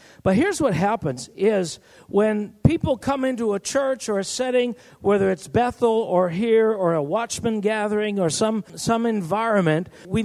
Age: 50-69